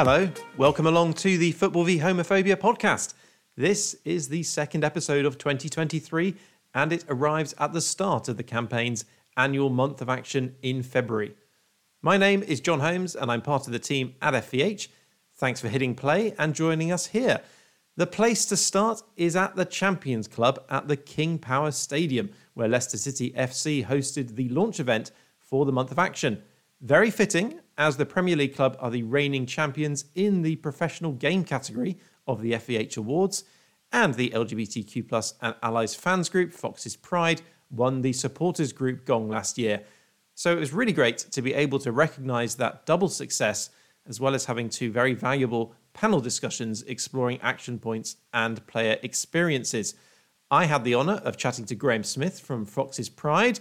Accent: British